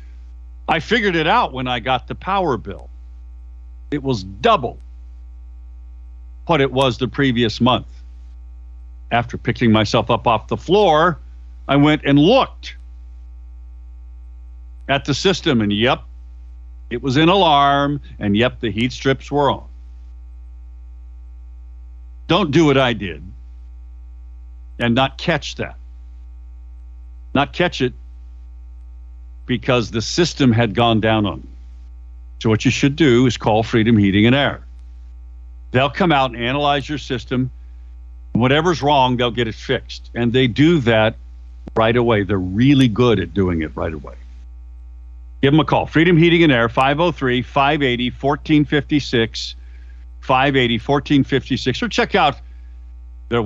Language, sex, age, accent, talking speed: English, male, 50-69, American, 130 wpm